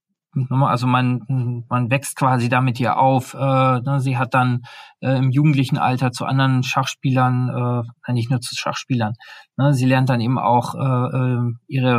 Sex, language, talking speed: male, German, 135 wpm